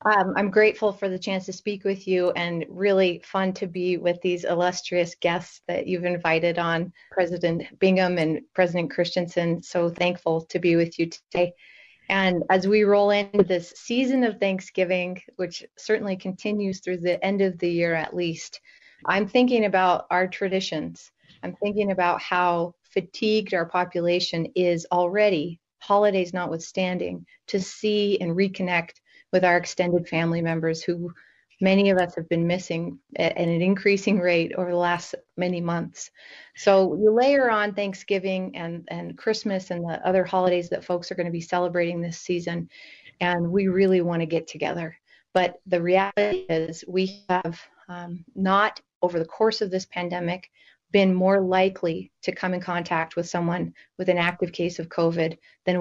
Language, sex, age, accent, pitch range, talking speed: English, female, 30-49, American, 170-195 Hz, 165 wpm